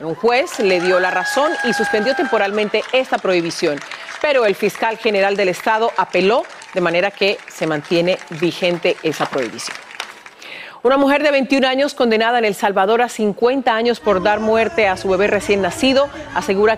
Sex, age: female, 40-59